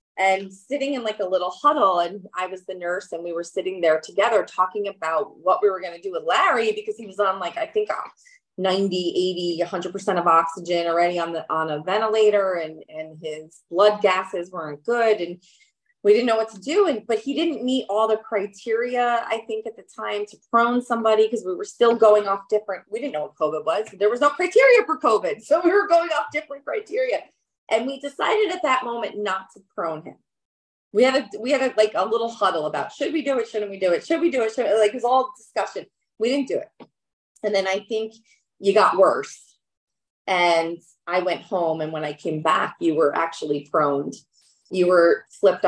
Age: 30-49